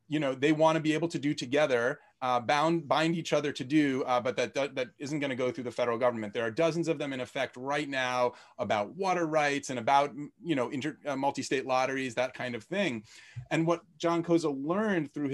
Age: 30-49